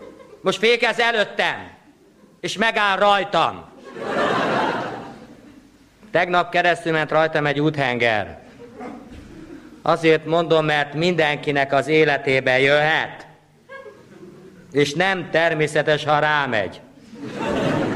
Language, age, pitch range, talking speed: Hungarian, 50-69, 165-220 Hz, 80 wpm